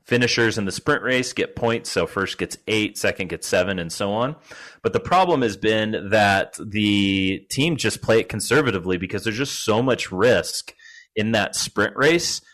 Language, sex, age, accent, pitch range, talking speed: English, male, 30-49, American, 95-115 Hz, 185 wpm